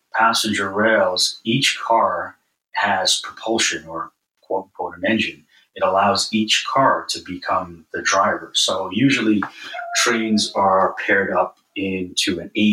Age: 30-49